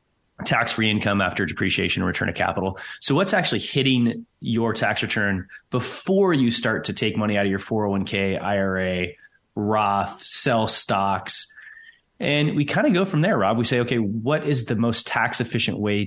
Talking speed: 170 wpm